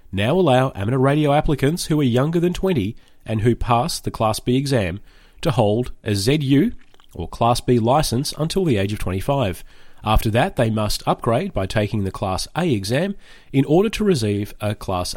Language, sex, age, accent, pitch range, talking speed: English, male, 30-49, Australian, 105-150 Hz, 185 wpm